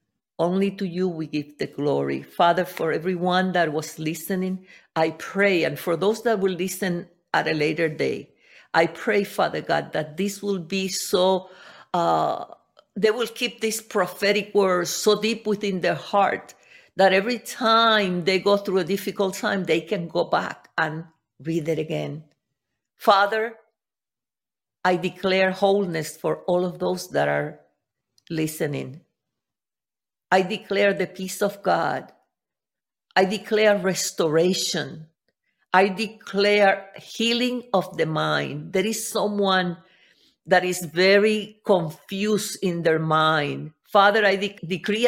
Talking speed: 135 wpm